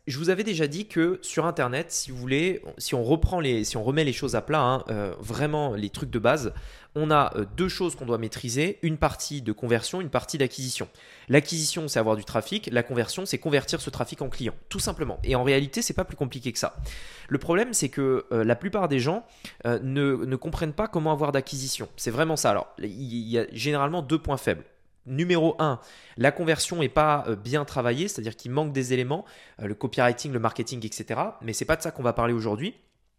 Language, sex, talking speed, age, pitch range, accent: French, male, 215 wpm, 20-39, 120-160 Hz, French